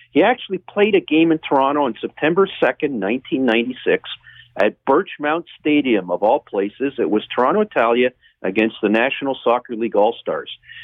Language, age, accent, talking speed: English, 50-69, American, 150 wpm